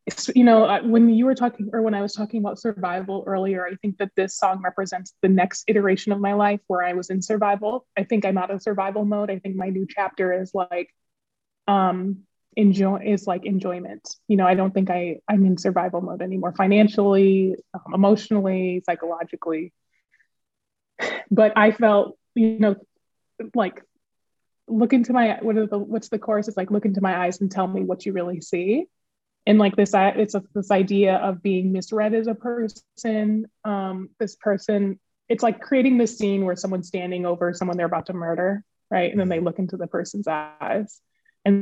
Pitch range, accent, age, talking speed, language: 190-220 Hz, American, 20-39, 190 wpm, English